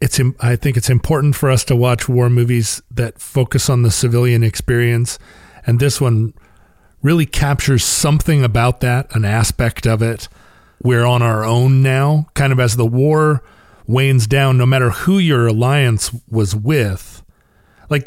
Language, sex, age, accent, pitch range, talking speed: English, male, 40-59, American, 105-135 Hz, 165 wpm